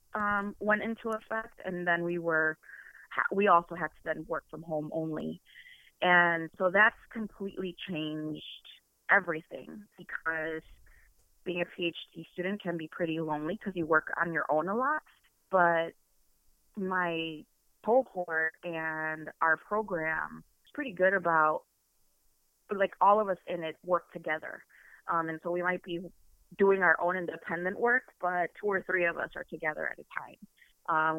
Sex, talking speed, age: female, 155 wpm, 20-39